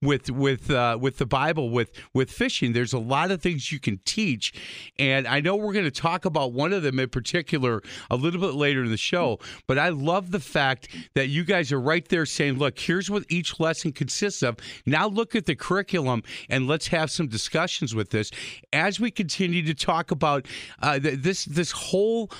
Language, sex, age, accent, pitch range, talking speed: English, male, 40-59, American, 130-180 Hz, 210 wpm